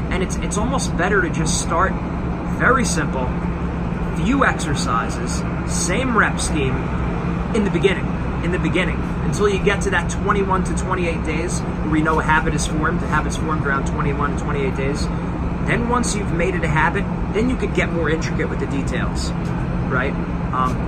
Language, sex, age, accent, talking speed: English, male, 30-49, American, 185 wpm